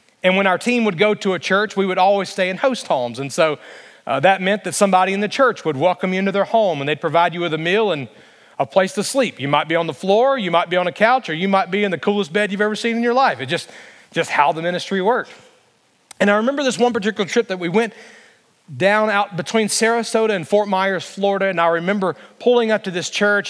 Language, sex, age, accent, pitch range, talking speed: English, male, 40-59, American, 175-210 Hz, 265 wpm